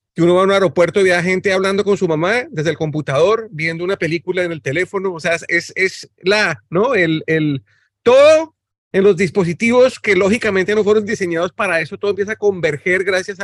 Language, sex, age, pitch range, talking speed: Spanish, male, 40-59, 165-200 Hz, 210 wpm